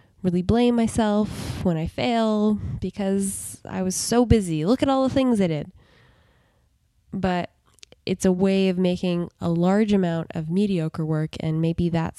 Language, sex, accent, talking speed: English, female, American, 160 wpm